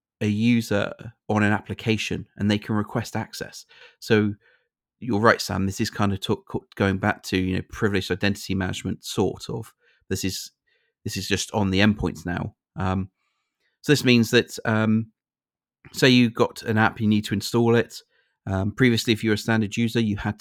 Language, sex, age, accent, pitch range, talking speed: English, male, 30-49, British, 95-110 Hz, 190 wpm